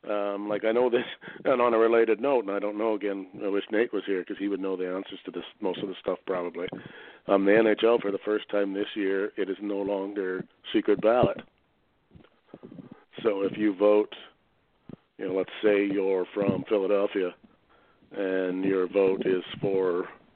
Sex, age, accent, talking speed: male, 40-59, American, 190 wpm